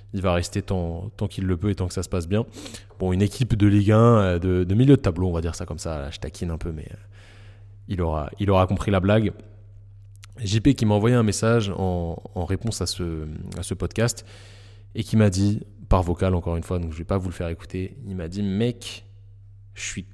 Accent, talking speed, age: French, 240 wpm, 20-39